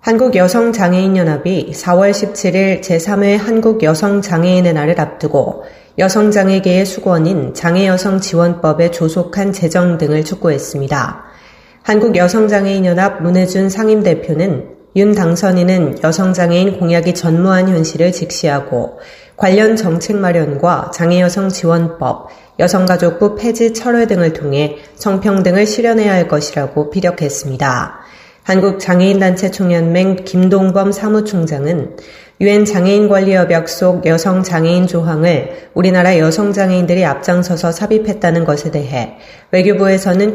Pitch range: 165-195 Hz